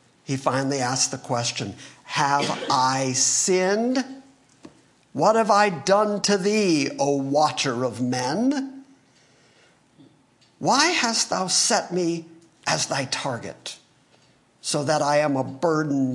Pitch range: 150-230 Hz